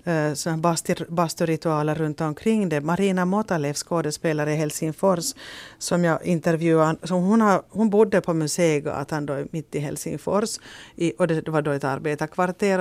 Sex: female